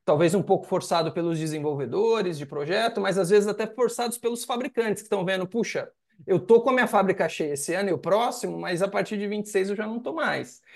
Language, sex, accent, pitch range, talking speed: Portuguese, male, Brazilian, 160-215 Hz, 230 wpm